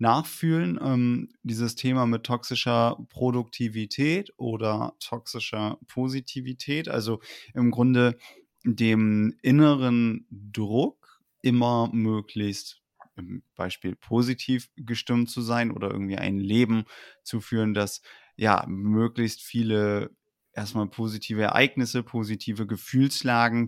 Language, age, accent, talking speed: German, 30-49, German, 95 wpm